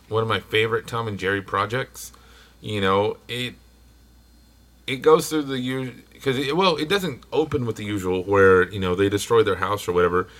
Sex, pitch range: male, 95-125 Hz